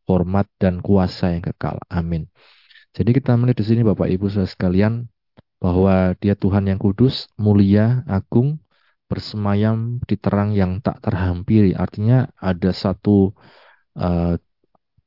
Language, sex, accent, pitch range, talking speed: Indonesian, male, native, 95-105 Hz, 120 wpm